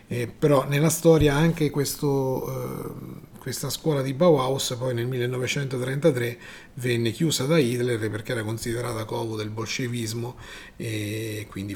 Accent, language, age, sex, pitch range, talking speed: native, Italian, 40-59, male, 120-160 Hz, 135 wpm